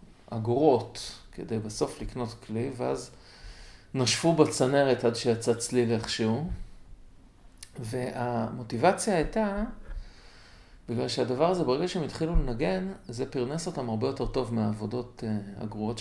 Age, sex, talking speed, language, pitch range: 40-59, male, 110 wpm, Hebrew, 110-130 Hz